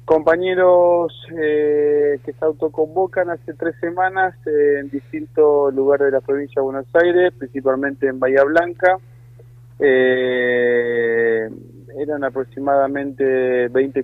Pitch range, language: 120-150 Hz, Spanish